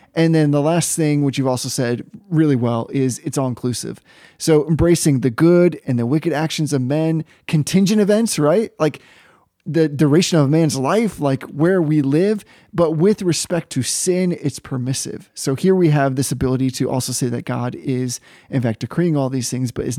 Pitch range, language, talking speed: 135-170 Hz, English, 195 wpm